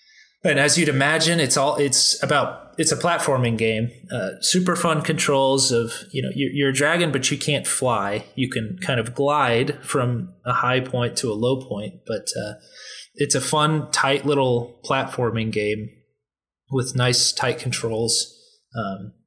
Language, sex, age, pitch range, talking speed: English, male, 20-39, 115-135 Hz, 170 wpm